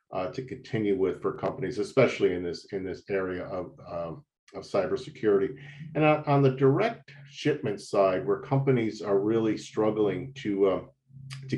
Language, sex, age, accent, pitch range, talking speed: English, male, 50-69, American, 105-135 Hz, 160 wpm